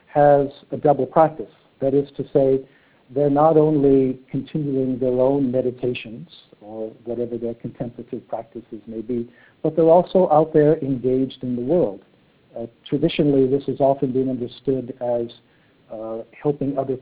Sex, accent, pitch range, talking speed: male, American, 120-145 Hz, 150 wpm